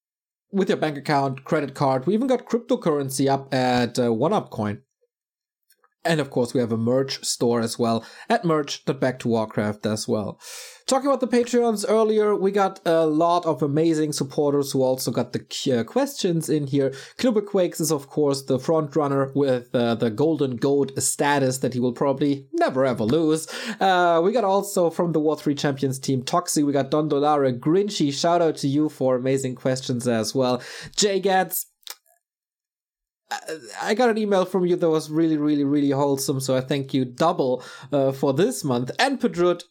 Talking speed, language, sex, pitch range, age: 180 wpm, English, male, 130-175 Hz, 30-49